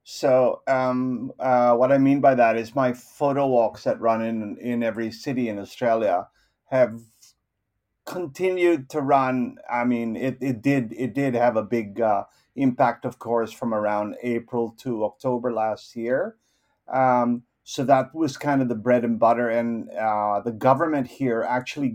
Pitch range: 115-135 Hz